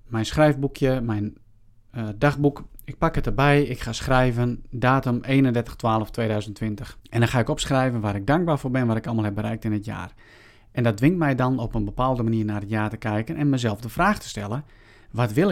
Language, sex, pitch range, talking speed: Dutch, male, 110-140 Hz, 210 wpm